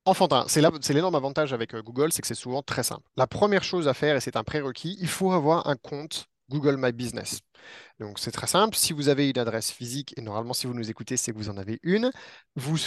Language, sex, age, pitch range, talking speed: French, male, 30-49, 120-160 Hz, 245 wpm